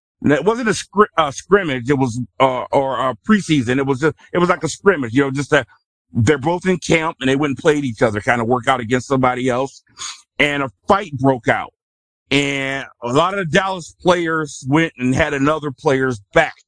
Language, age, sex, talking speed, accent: English, 50-69, male, 225 wpm, American